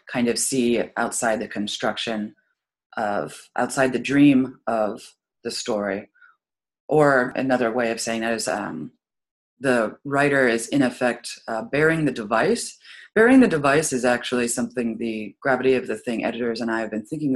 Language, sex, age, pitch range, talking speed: English, female, 30-49, 120-160 Hz, 165 wpm